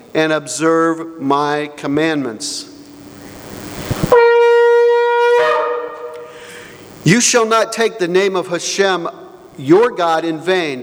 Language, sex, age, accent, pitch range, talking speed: English, male, 50-69, American, 155-220 Hz, 90 wpm